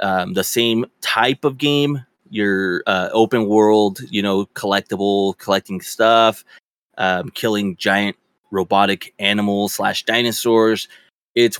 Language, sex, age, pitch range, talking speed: English, male, 20-39, 95-115 Hz, 120 wpm